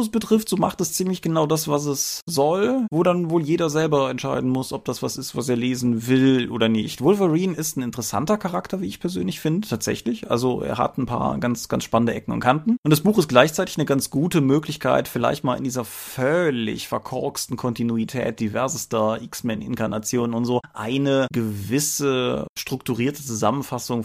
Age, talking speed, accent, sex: 30-49, 185 wpm, German, male